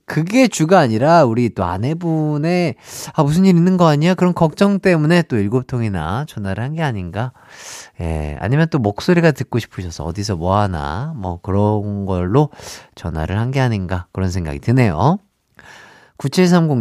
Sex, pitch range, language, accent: male, 105-165 Hz, Korean, native